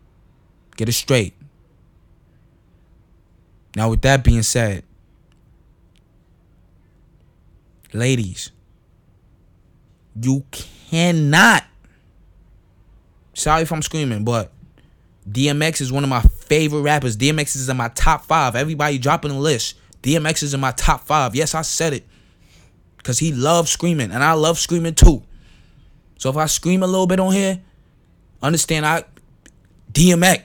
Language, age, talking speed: English, 20-39, 125 wpm